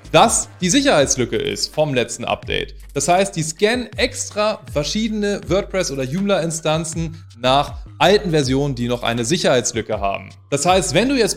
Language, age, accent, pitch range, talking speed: German, 30-49, German, 130-185 Hz, 160 wpm